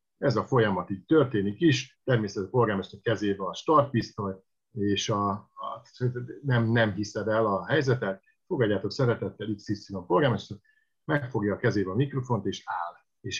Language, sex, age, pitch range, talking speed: Hungarian, male, 50-69, 110-140 Hz, 145 wpm